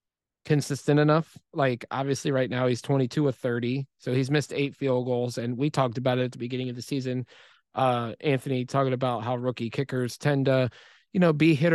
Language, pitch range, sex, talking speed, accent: English, 125-140 Hz, male, 205 wpm, American